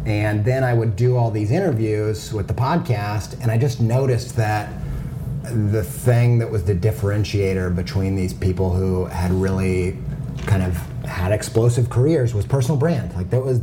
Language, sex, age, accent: English, male, 30-49, American